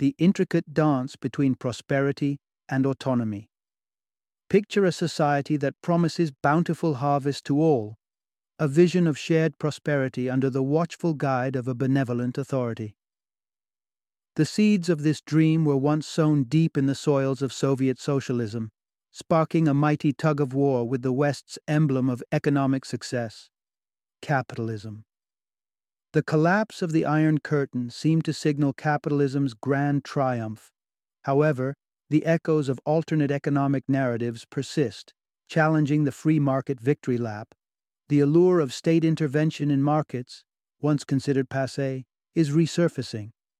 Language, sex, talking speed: English, male, 130 wpm